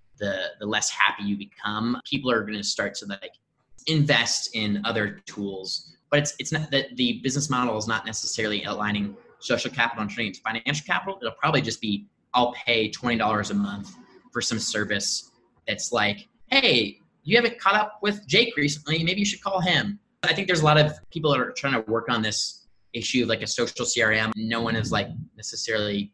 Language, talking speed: English, 200 wpm